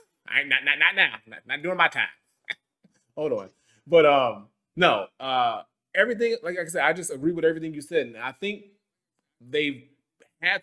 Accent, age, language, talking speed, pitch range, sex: American, 20-39, English, 185 wpm, 120-150 Hz, male